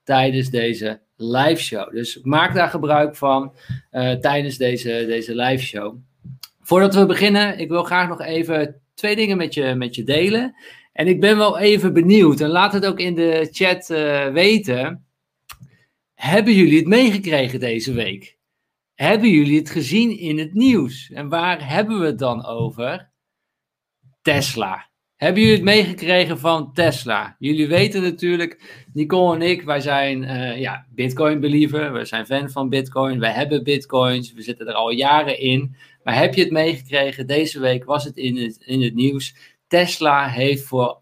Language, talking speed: Dutch, 165 wpm